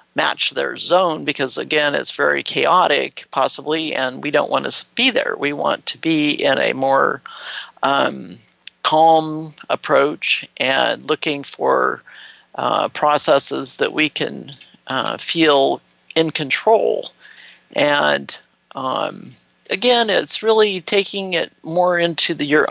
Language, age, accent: English, 50-69, American